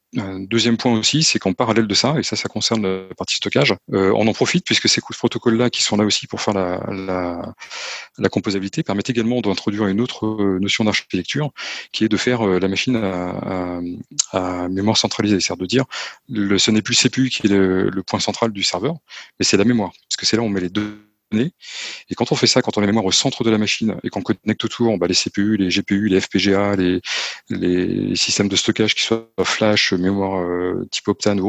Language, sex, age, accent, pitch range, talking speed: French, male, 30-49, French, 95-115 Hz, 230 wpm